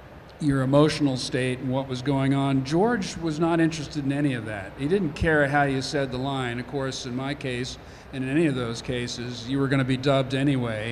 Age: 50-69